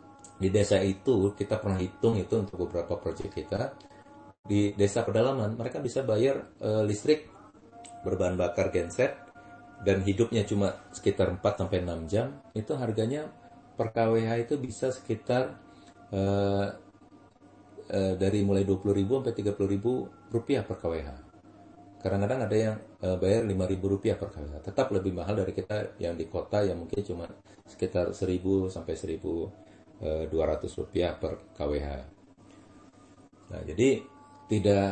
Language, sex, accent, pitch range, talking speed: Indonesian, male, native, 90-110 Hz, 125 wpm